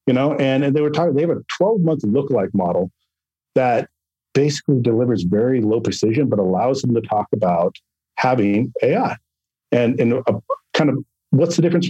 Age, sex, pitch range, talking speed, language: 40-59, male, 105-140 Hz, 180 wpm, English